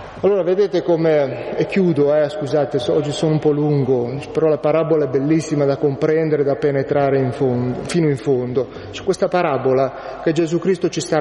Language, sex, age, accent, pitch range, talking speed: Italian, male, 30-49, native, 150-180 Hz, 180 wpm